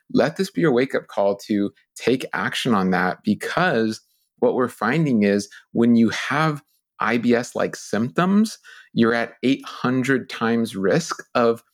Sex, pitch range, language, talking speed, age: male, 105-130 Hz, English, 140 wpm, 30-49